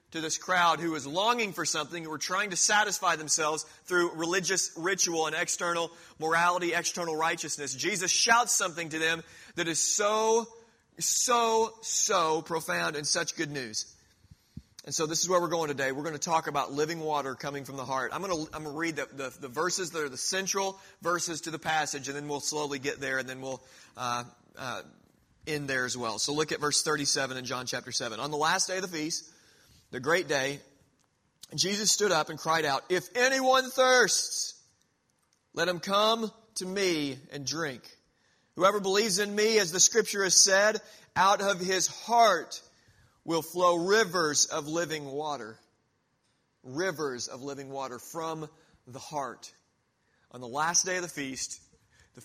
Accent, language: American, English